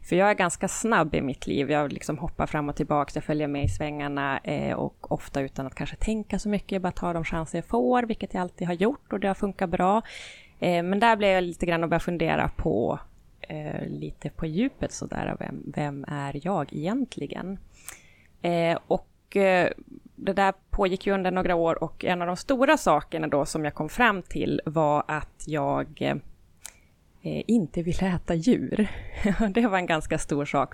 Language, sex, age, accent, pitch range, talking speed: Swedish, female, 20-39, native, 145-190 Hz, 185 wpm